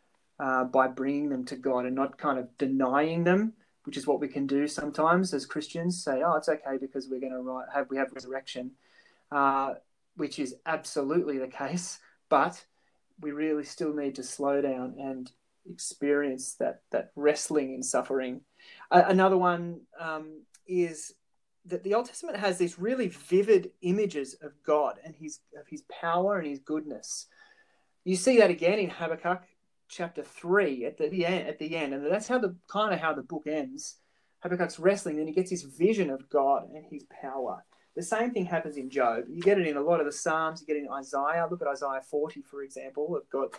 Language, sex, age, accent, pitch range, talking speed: English, male, 20-39, Australian, 140-180 Hz, 195 wpm